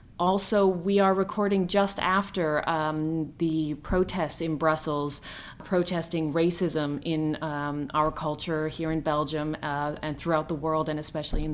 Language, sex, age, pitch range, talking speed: English, female, 30-49, 155-175 Hz, 145 wpm